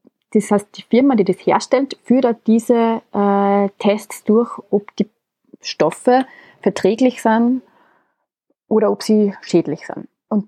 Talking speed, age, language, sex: 130 wpm, 30-49, German, female